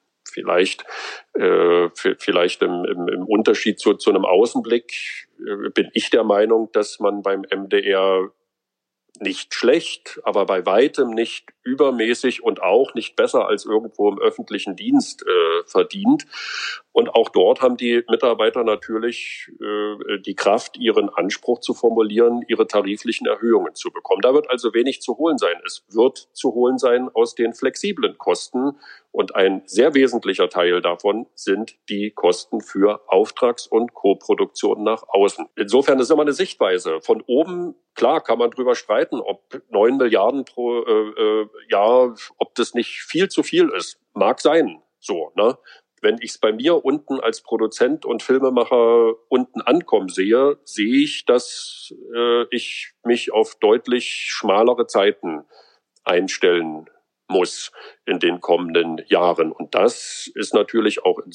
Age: 40-59